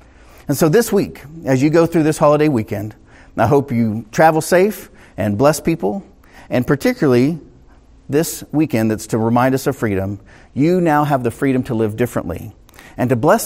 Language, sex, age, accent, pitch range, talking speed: English, male, 40-59, American, 95-135 Hz, 180 wpm